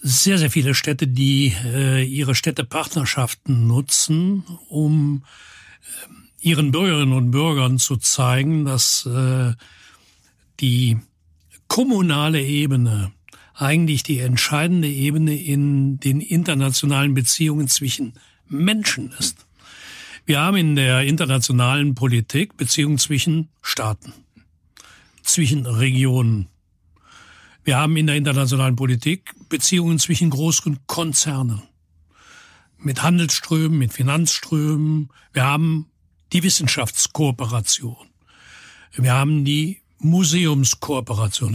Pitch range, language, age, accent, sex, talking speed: 125-160 Hz, German, 60-79, German, male, 90 wpm